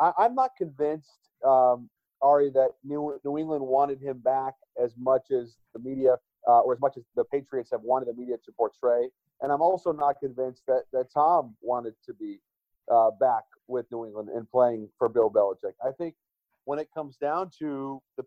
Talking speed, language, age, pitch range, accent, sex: 195 wpm, English, 40-59, 125-165 Hz, American, male